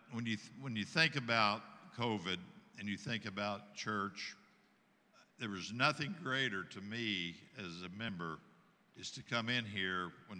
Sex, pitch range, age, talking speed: male, 90-115 Hz, 60-79, 160 wpm